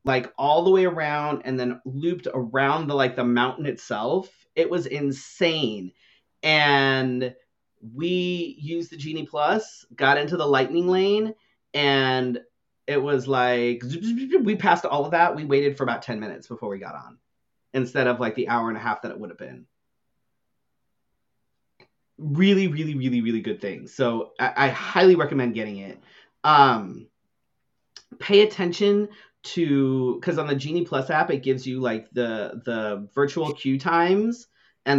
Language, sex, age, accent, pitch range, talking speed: English, male, 30-49, American, 130-160 Hz, 160 wpm